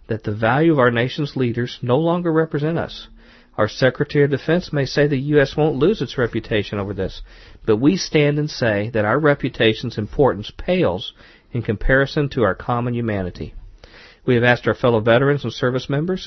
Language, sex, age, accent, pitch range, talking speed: English, male, 50-69, American, 110-140 Hz, 185 wpm